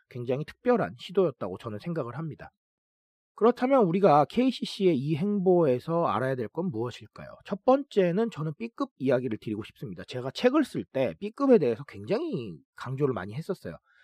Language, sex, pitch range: Korean, male, 125-205 Hz